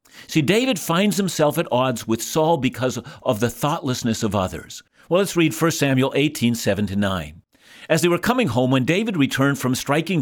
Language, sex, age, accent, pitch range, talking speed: English, male, 50-69, American, 120-165 Hz, 180 wpm